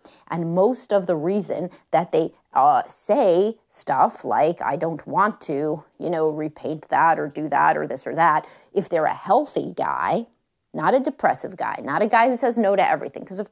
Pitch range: 165-220 Hz